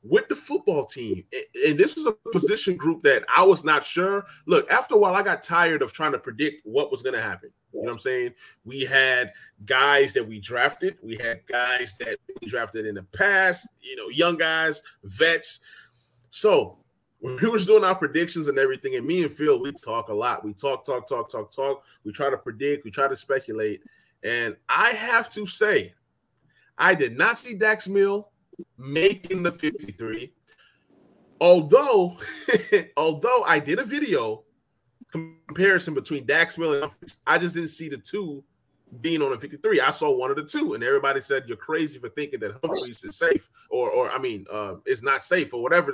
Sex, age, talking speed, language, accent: male, 20-39, 195 wpm, English, American